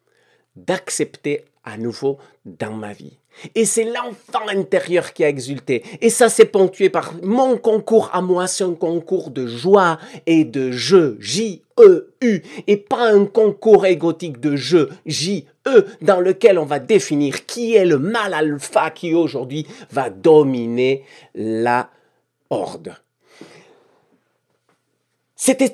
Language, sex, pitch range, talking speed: French, male, 140-220 Hz, 130 wpm